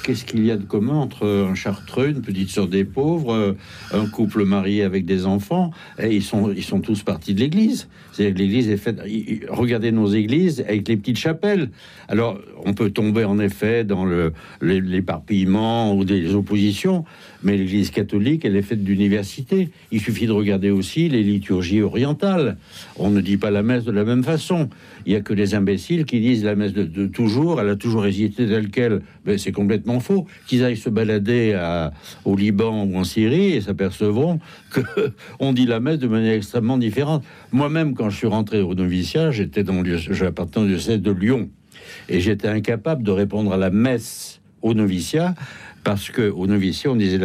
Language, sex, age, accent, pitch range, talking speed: French, male, 60-79, French, 100-125 Hz, 190 wpm